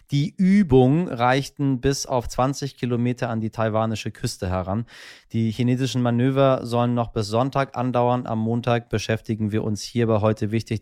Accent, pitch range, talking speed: German, 110-140 Hz, 155 wpm